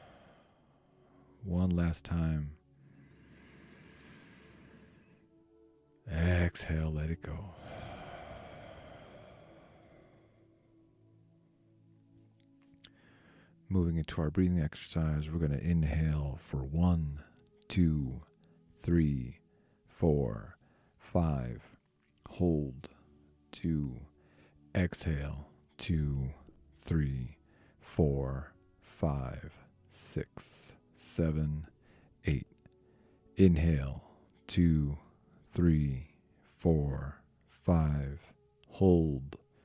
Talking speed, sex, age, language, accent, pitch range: 60 wpm, male, 40-59, English, American, 75-90 Hz